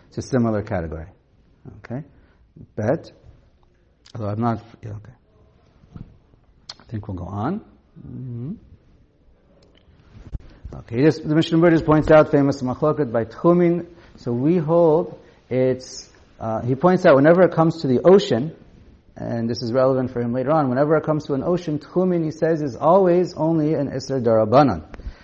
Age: 50-69